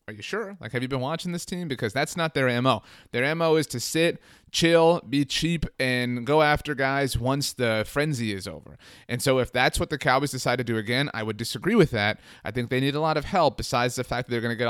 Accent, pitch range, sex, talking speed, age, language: American, 115-145 Hz, male, 260 wpm, 30-49, English